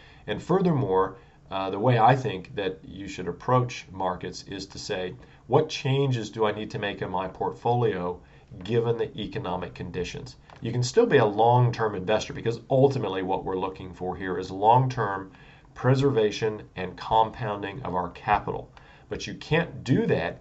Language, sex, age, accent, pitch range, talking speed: English, male, 40-59, American, 95-130 Hz, 165 wpm